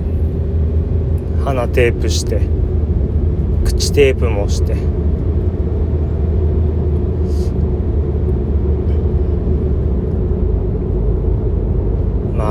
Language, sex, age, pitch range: Japanese, male, 40-59, 80-95 Hz